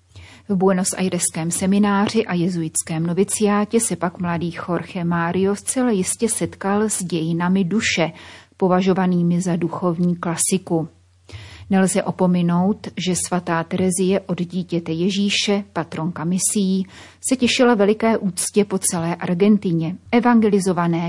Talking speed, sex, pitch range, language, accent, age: 115 wpm, female, 170-205 Hz, Czech, native, 30-49